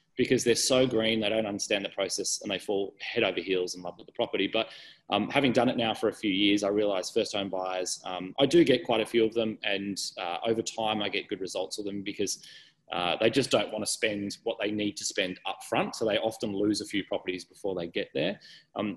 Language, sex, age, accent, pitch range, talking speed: English, male, 20-39, Australian, 100-125 Hz, 255 wpm